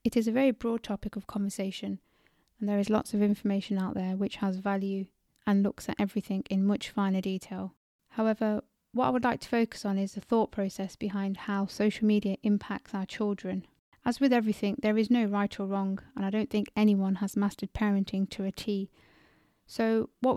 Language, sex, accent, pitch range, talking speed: English, female, British, 195-220 Hz, 200 wpm